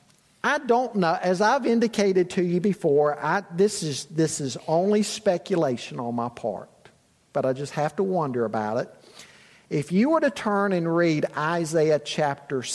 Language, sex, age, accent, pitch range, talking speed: English, male, 50-69, American, 145-205 Hz, 170 wpm